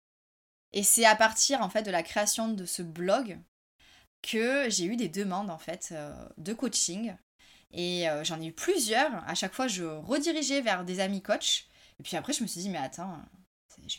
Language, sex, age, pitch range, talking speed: French, female, 20-39, 190-275 Hz, 200 wpm